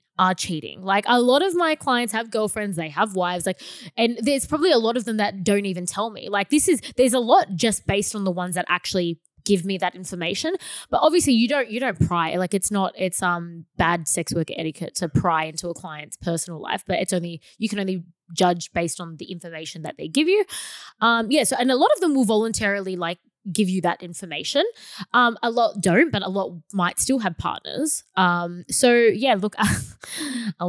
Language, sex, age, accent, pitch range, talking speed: English, female, 20-39, Australian, 180-255 Hz, 220 wpm